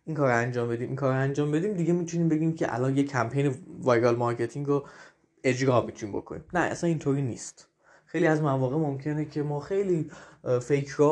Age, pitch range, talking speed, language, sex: 20-39, 130-170 Hz, 180 wpm, Persian, male